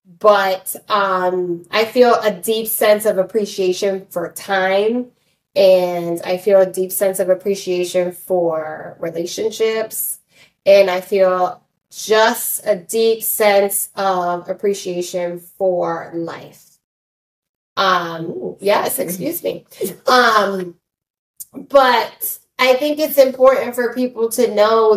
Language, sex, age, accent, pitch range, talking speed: English, female, 10-29, American, 180-220 Hz, 110 wpm